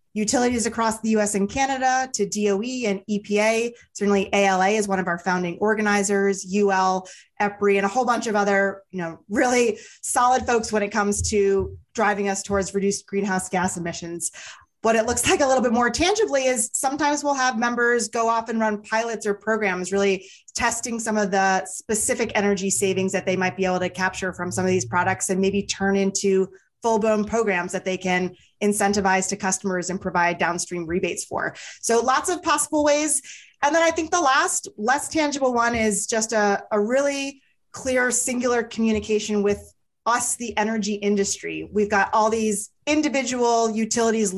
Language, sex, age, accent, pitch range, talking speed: English, female, 30-49, American, 190-235 Hz, 180 wpm